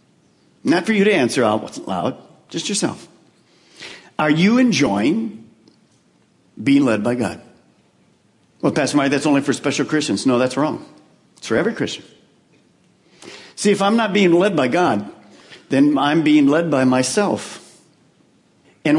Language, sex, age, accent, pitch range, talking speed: English, male, 50-69, American, 145-205 Hz, 145 wpm